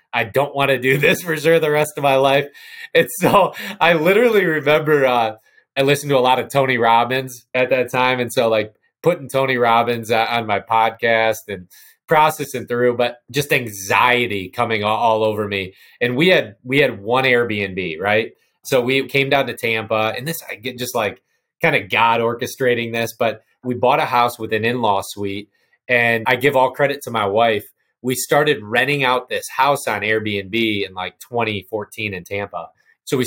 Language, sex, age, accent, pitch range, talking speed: English, male, 30-49, American, 110-135 Hz, 190 wpm